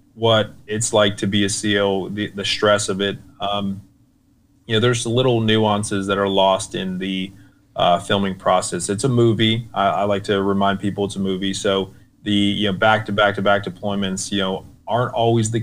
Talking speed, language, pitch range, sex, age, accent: 190 wpm, Polish, 95-110 Hz, male, 30-49, American